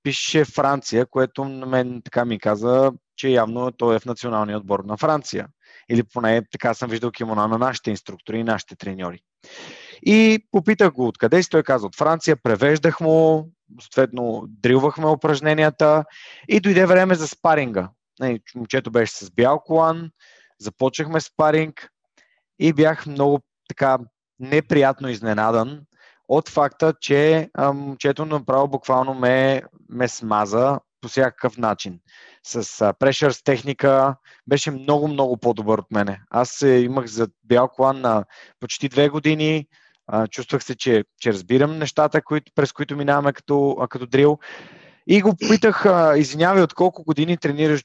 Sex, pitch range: male, 120-155 Hz